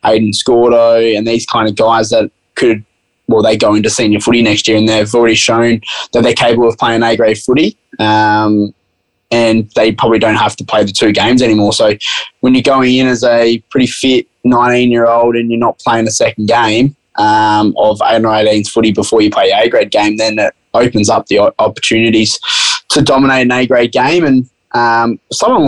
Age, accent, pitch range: 20-39, Australian, 110-120 Hz